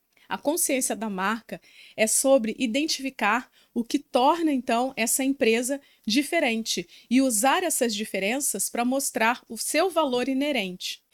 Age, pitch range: 30-49, 210-265 Hz